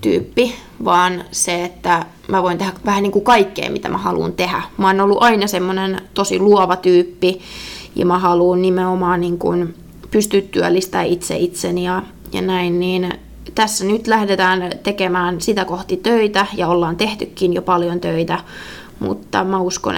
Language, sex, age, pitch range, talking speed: Finnish, female, 20-39, 180-205 Hz, 155 wpm